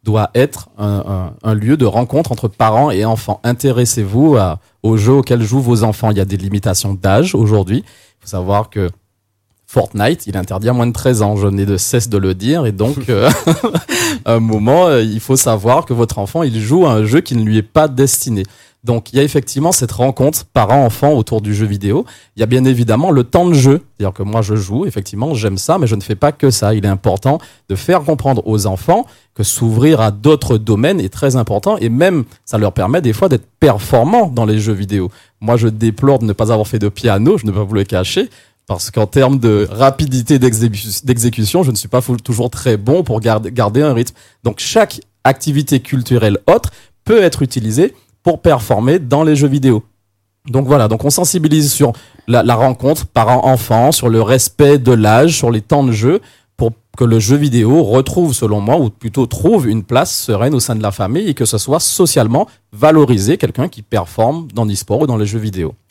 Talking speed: 220 wpm